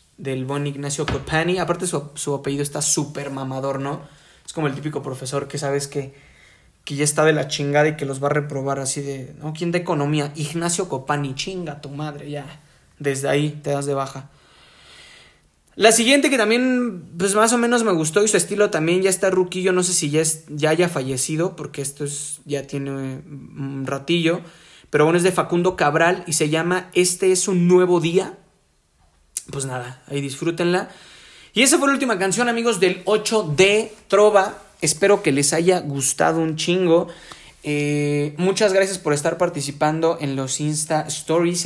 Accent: Mexican